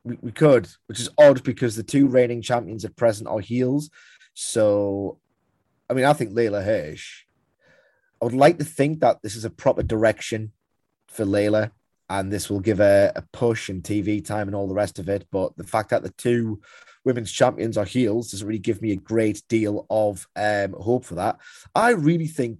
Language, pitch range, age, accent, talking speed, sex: English, 100-120 Hz, 30-49, British, 200 wpm, male